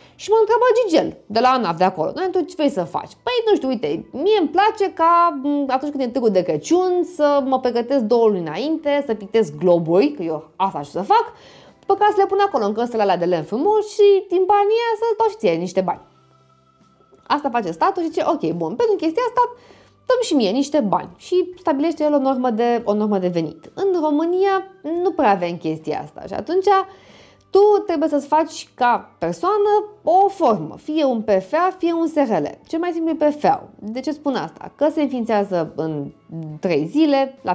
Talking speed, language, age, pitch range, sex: 195 wpm, Romanian, 20-39, 200-335 Hz, female